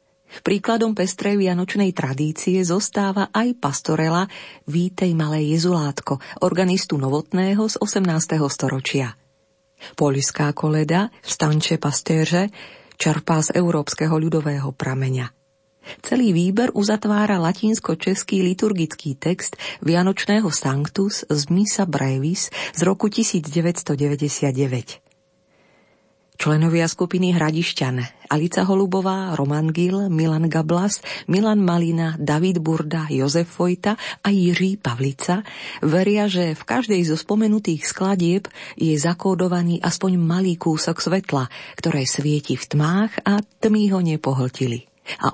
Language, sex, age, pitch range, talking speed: Slovak, female, 40-59, 150-190 Hz, 105 wpm